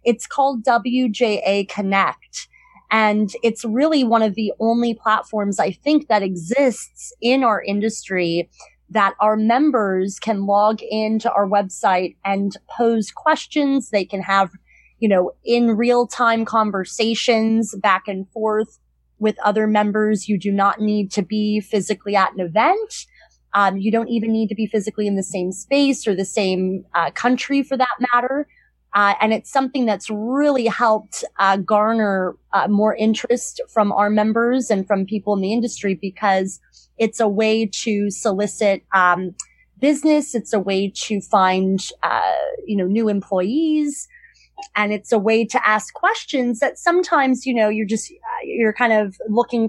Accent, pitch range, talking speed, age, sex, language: American, 200-240 Hz, 155 wpm, 30-49, female, English